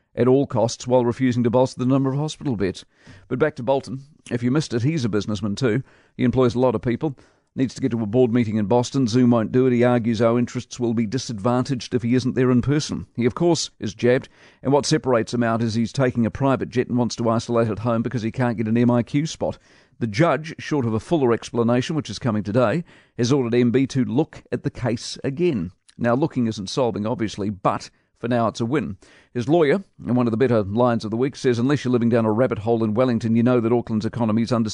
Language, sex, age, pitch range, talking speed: English, male, 50-69, 115-135 Hz, 250 wpm